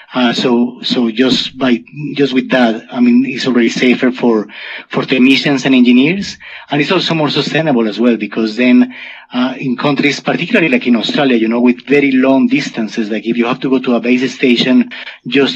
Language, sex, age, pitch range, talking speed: English, male, 30-49, 120-140 Hz, 195 wpm